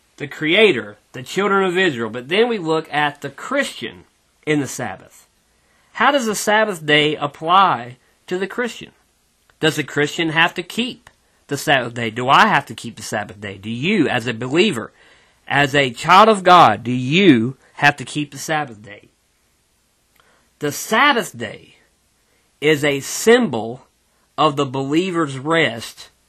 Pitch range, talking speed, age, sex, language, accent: 125-185 Hz, 160 wpm, 40-59, male, English, American